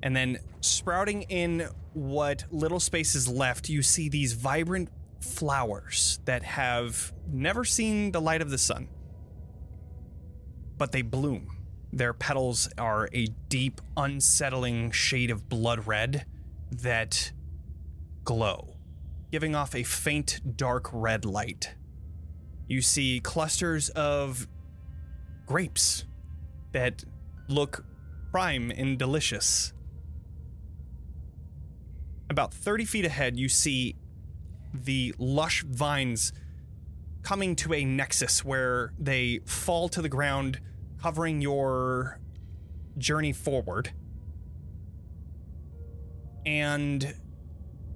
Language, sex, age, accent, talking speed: English, male, 20-39, American, 100 wpm